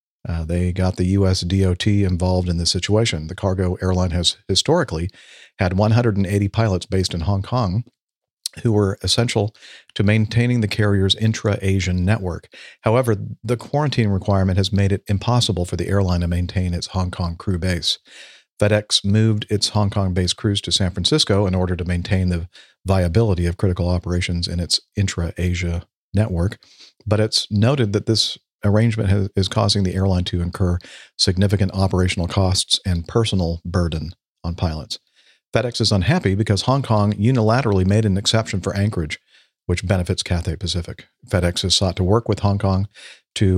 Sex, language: male, English